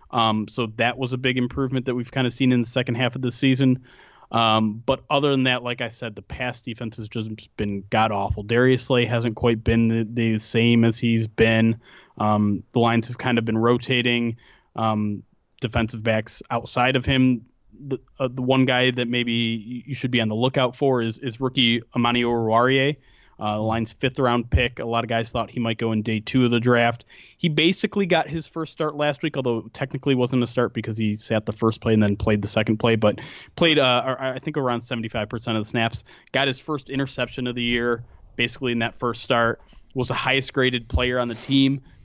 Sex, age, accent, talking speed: male, 20-39, American, 215 wpm